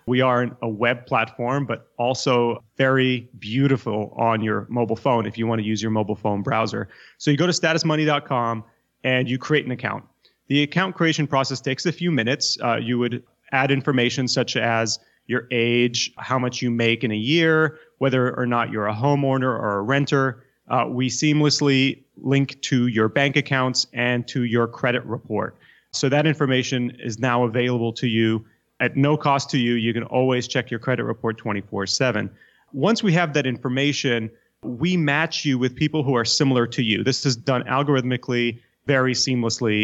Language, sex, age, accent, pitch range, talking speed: English, male, 30-49, American, 120-140 Hz, 180 wpm